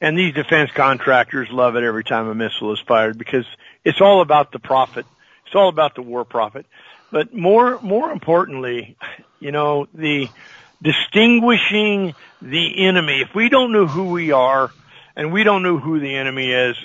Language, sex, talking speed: English, male, 175 wpm